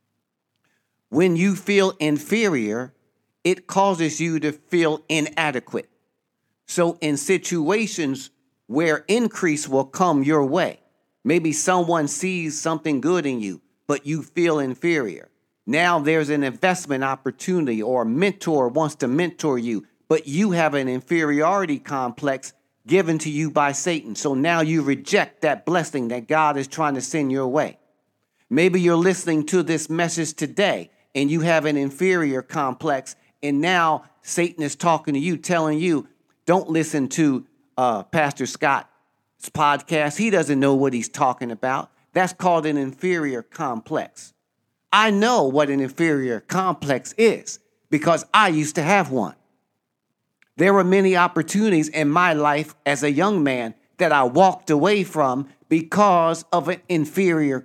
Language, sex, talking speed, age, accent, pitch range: English, male, 145 wpm, 50-69, American, 140-180 Hz